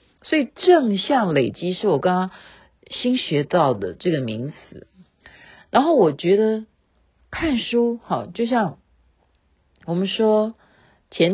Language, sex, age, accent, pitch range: Chinese, female, 50-69, native, 160-235 Hz